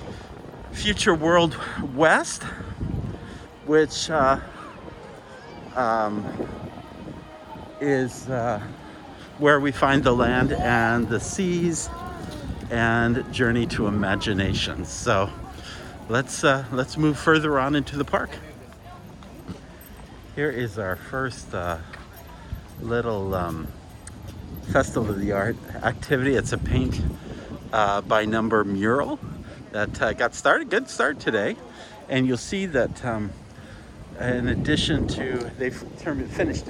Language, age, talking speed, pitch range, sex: English, 50-69, 110 wpm, 95-125 Hz, male